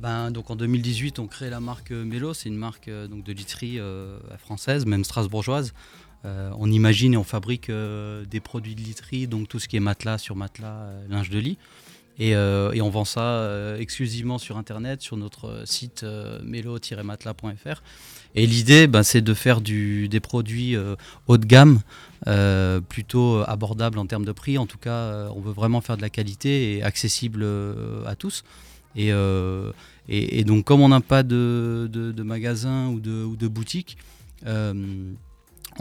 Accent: French